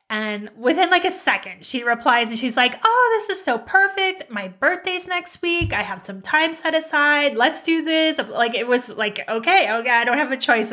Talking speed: 220 wpm